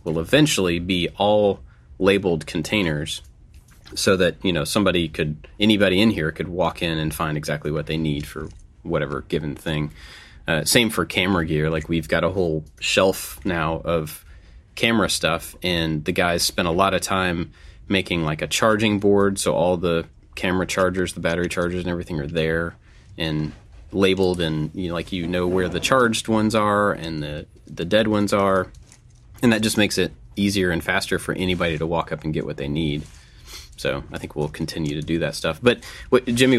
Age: 30-49